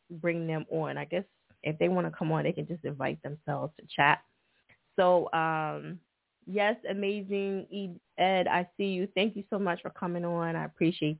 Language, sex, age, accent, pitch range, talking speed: English, female, 20-39, American, 165-205 Hz, 190 wpm